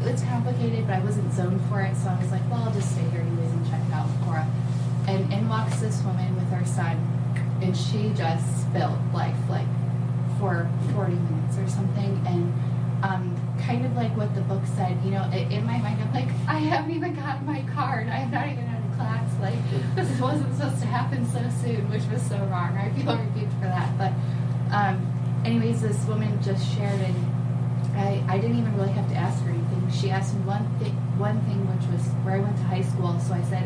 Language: English